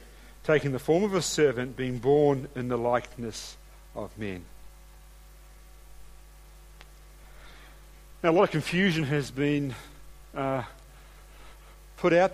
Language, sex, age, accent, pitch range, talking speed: English, male, 50-69, Australian, 135-170 Hz, 110 wpm